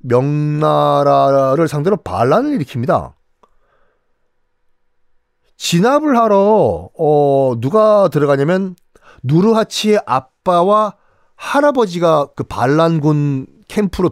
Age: 40-59